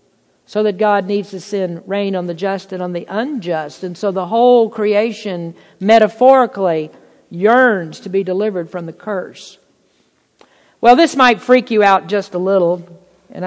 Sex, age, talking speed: female, 50-69, 165 wpm